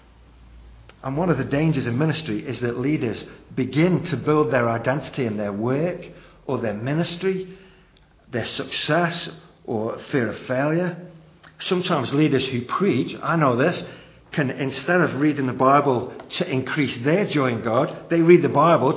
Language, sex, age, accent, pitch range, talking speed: English, male, 50-69, British, 120-160 Hz, 160 wpm